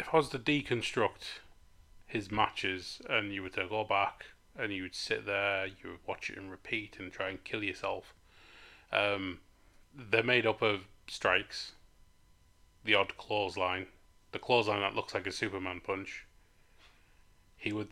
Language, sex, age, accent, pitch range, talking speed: English, male, 30-49, British, 90-110 Hz, 160 wpm